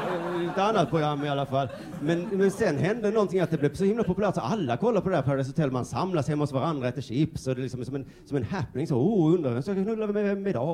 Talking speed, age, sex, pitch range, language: 275 wpm, 30-49, male, 130-185 Hz, Swedish